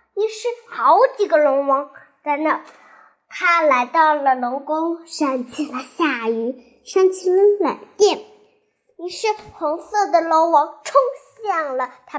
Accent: native